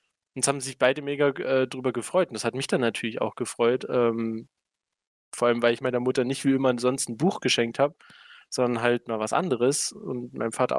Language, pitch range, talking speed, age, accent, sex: German, 120-150 Hz, 215 wpm, 20-39, German, male